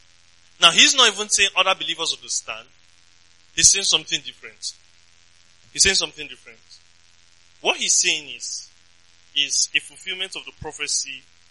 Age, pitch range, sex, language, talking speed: 20-39, 90-145 Hz, male, English, 135 wpm